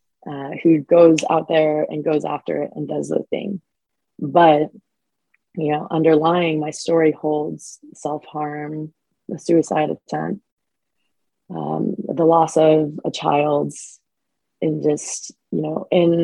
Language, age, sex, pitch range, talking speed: English, 20-39, female, 150-165 Hz, 130 wpm